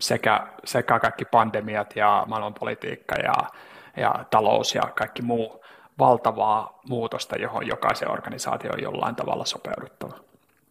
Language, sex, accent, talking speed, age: Finnish, male, native, 120 wpm, 30-49